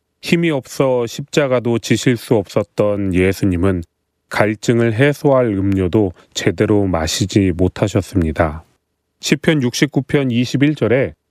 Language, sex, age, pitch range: Korean, male, 30-49, 95-135 Hz